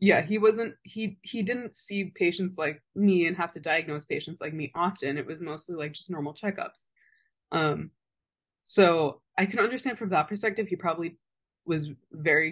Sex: female